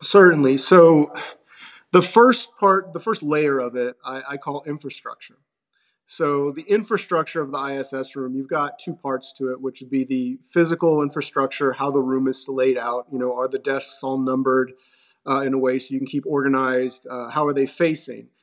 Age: 30-49